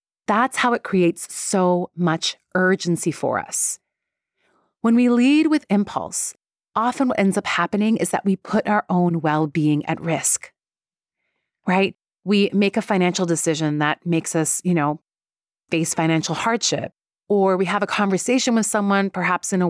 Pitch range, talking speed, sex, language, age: 170-220 Hz, 160 wpm, female, English, 30-49